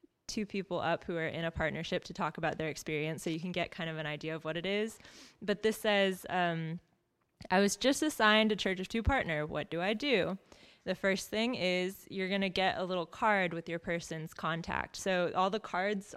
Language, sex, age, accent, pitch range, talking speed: English, female, 20-39, American, 170-205 Hz, 225 wpm